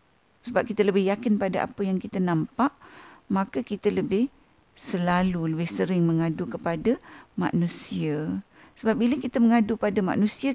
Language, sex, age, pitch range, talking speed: Malay, female, 50-69, 175-240 Hz, 135 wpm